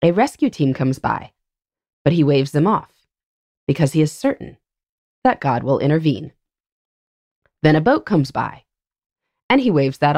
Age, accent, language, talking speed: 20-39, American, English, 160 wpm